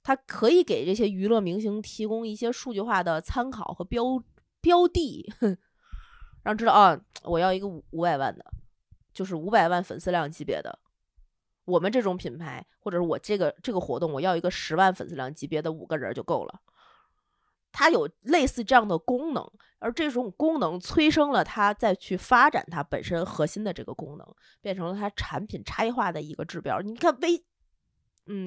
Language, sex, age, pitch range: Chinese, female, 20-39, 165-235 Hz